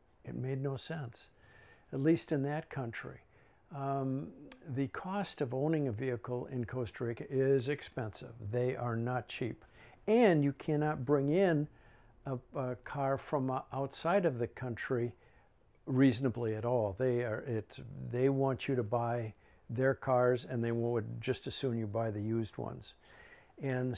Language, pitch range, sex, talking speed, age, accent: English, 120-150 Hz, male, 155 wpm, 60-79, American